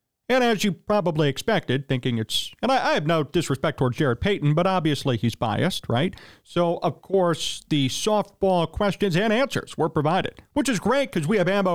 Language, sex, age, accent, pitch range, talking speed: English, male, 40-59, American, 140-205 Hz, 195 wpm